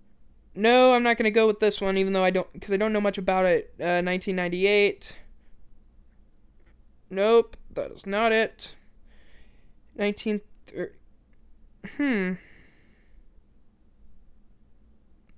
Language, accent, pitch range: English, American, 180-225 Hz